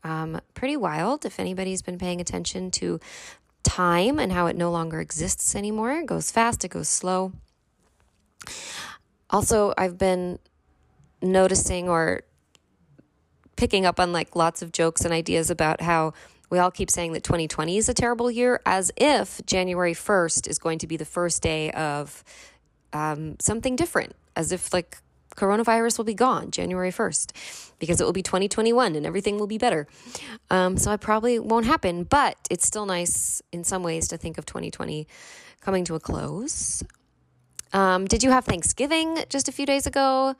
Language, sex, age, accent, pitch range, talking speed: English, female, 20-39, American, 165-235 Hz, 170 wpm